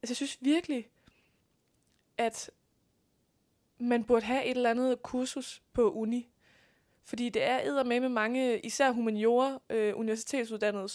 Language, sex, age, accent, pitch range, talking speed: Danish, female, 20-39, native, 210-250 Hz, 130 wpm